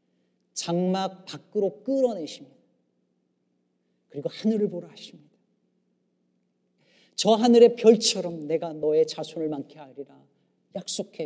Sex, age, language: male, 40-59, Korean